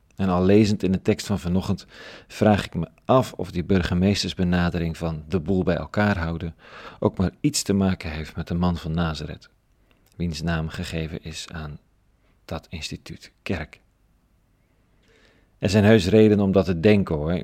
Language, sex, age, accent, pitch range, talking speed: Dutch, male, 40-59, Dutch, 90-105 Hz, 170 wpm